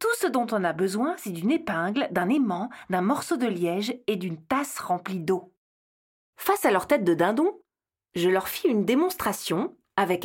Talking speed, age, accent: 185 wpm, 40-59, French